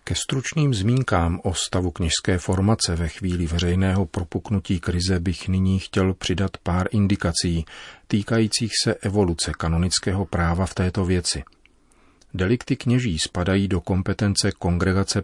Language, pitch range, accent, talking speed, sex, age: Czech, 85-100 Hz, native, 125 wpm, male, 40-59